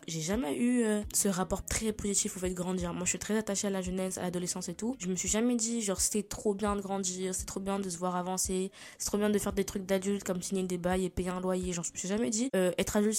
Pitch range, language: 180-210 Hz, French